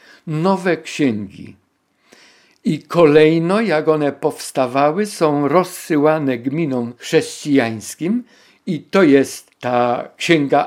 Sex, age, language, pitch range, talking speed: male, 50-69, Polish, 140-185 Hz, 90 wpm